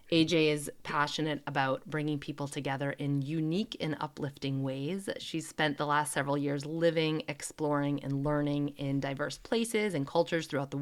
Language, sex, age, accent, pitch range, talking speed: English, female, 30-49, American, 140-170 Hz, 160 wpm